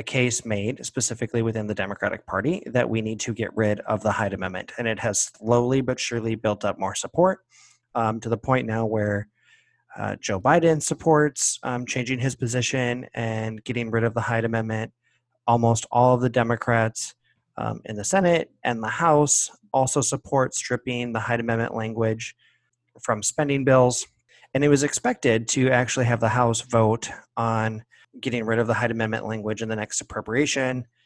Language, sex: English, male